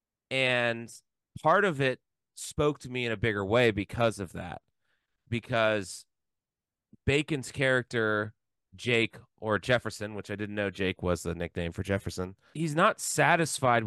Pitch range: 100-120 Hz